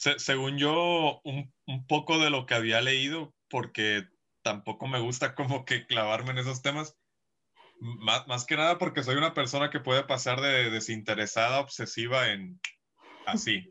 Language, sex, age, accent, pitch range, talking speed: Spanish, male, 20-39, Mexican, 115-145 Hz, 160 wpm